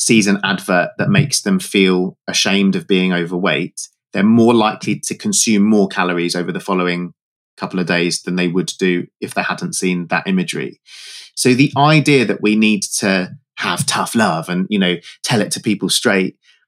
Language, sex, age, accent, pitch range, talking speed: English, male, 30-49, British, 95-150 Hz, 185 wpm